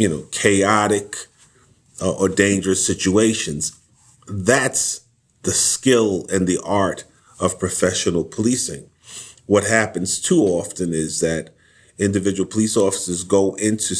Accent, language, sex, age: American, English, male, 40-59